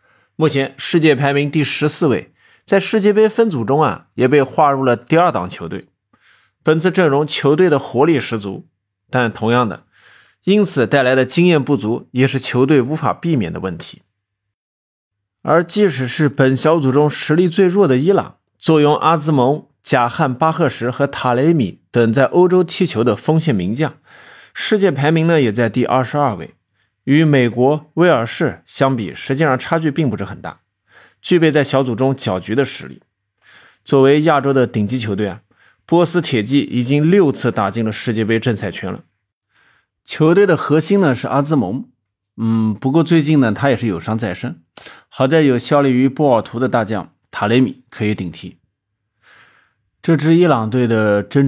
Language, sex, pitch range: Chinese, male, 110-155 Hz